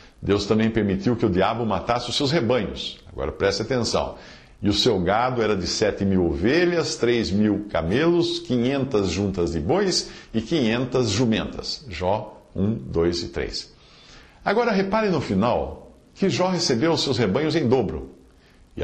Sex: male